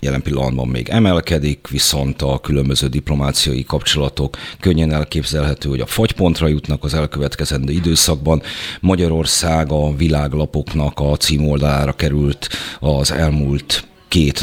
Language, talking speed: Hungarian, 110 wpm